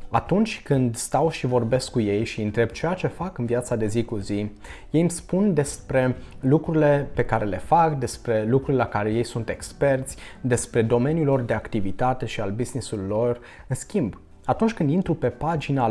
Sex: male